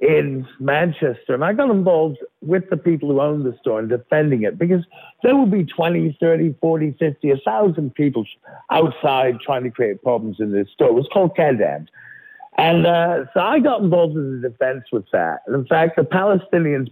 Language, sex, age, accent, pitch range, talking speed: Hebrew, male, 60-79, American, 125-175 Hz, 195 wpm